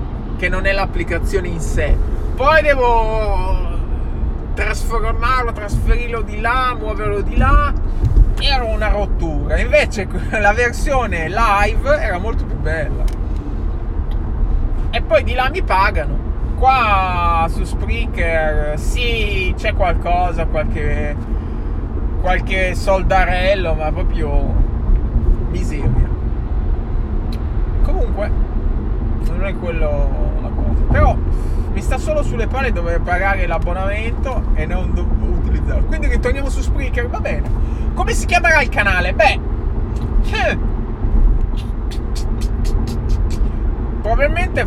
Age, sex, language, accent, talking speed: 20-39, male, Italian, native, 100 wpm